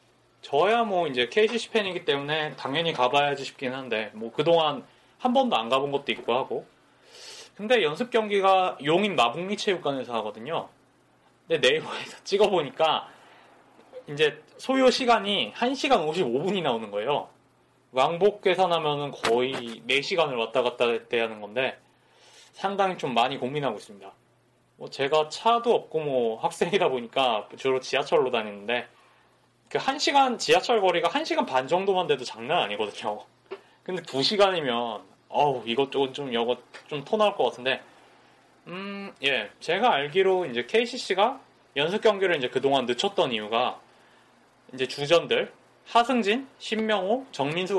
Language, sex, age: Korean, male, 20-39